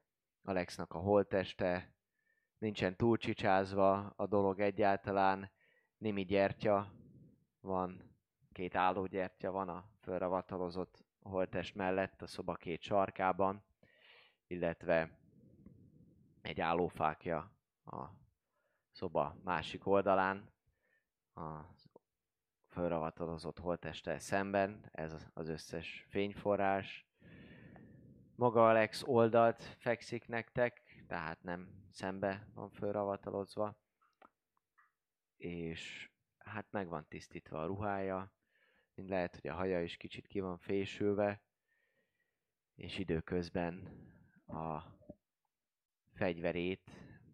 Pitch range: 90-105 Hz